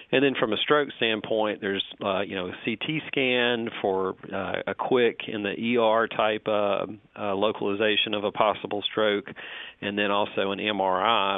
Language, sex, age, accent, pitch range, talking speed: English, male, 40-59, American, 105-125 Hz, 175 wpm